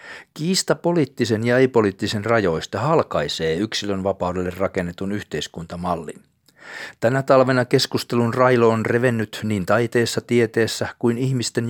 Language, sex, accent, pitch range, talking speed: Finnish, male, native, 105-130 Hz, 110 wpm